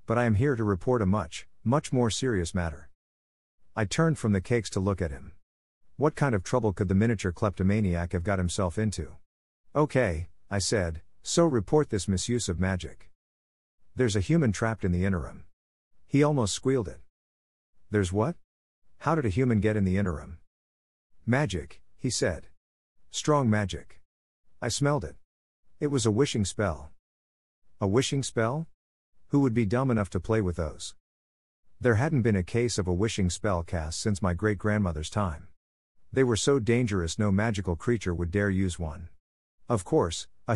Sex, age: male, 50-69